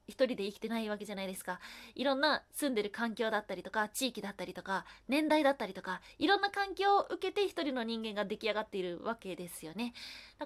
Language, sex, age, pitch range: Japanese, female, 20-39, 205-275 Hz